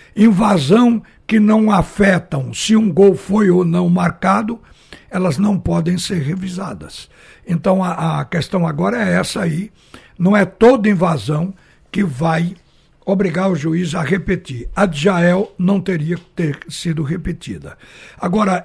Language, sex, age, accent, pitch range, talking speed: Portuguese, male, 60-79, Brazilian, 165-200 Hz, 140 wpm